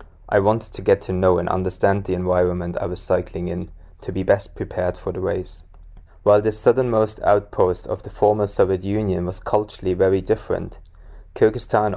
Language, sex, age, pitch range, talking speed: English, male, 20-39, 90-100 Hz, 175 wpm